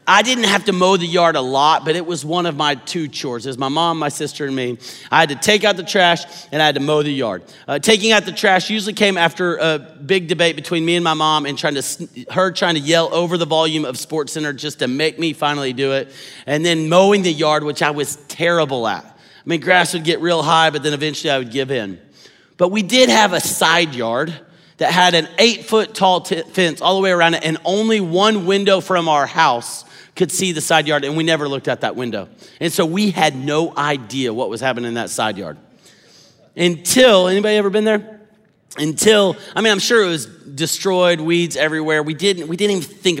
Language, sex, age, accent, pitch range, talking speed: English, male, 40-59, American, 145-180 Hz, 235 wpm